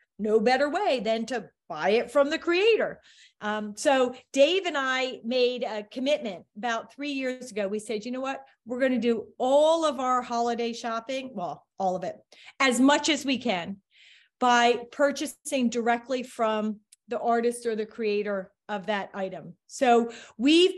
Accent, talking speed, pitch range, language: American, 170 wpm, 225-285 Hz, English